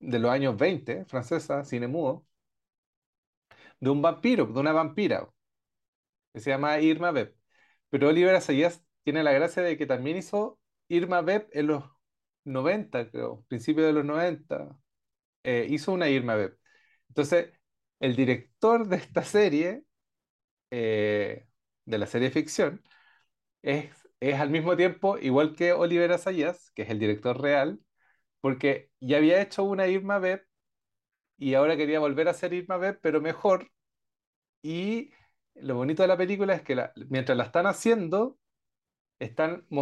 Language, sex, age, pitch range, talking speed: Spanish, male, 40-59, 130-175 Hz, 150 wpm